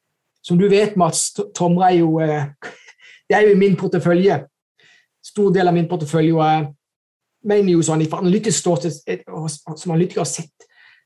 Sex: male